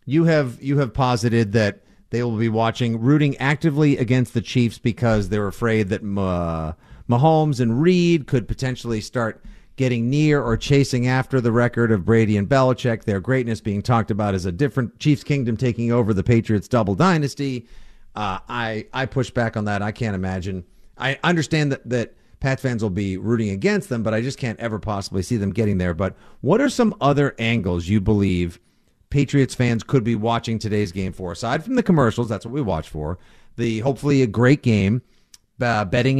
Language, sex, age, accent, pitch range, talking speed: English, male, 40-59, American, 105-130 Hz, 190 wpm